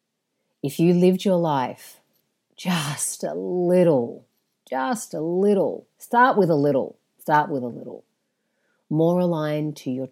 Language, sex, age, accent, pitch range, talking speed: English, female, 40-59, Australian, 130-150 Hz, 135 wpm